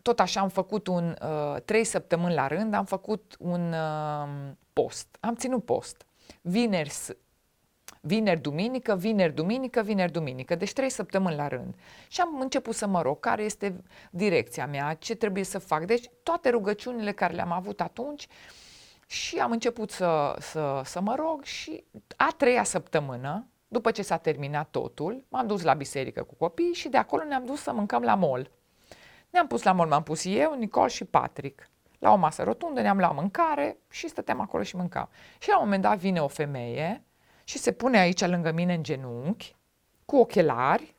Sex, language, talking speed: female, Romanian, 175 wpm